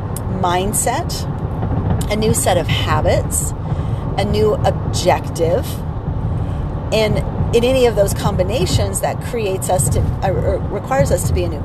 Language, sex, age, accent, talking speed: English, female, 40-59, American, 130 wpm